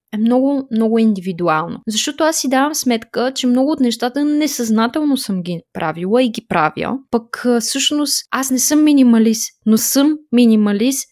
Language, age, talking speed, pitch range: Bulgarian, 20-39, 155 wpm, 220-290 Hz